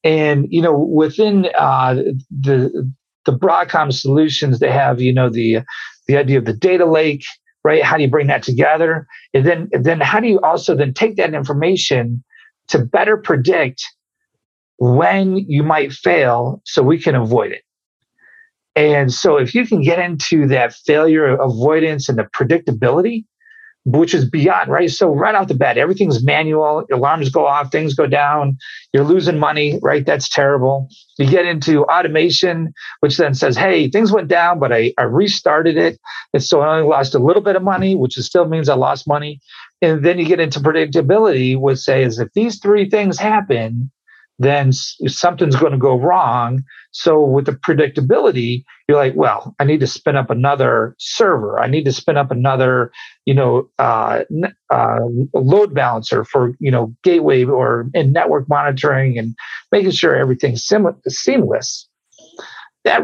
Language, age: English, 40-59